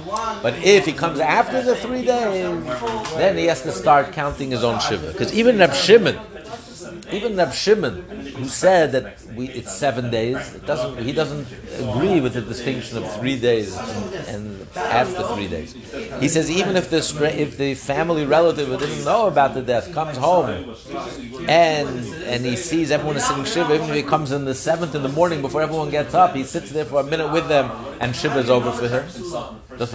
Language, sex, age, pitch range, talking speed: English, male, 60-79, 125-165 Hz, 200 wpm